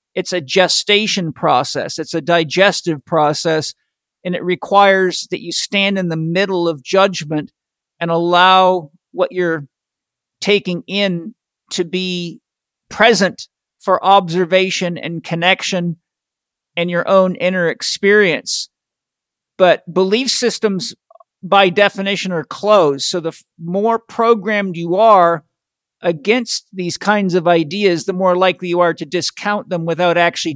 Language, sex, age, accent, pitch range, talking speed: English, male, 50-69, American, 160-190 Hz, 130 wpm